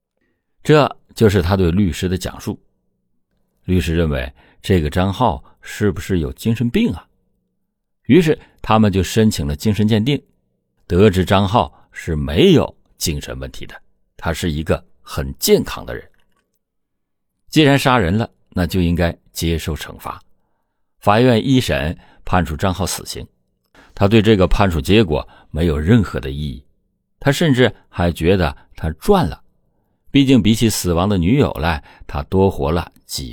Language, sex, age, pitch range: Chinese, male, 50-69, 80-105 Hz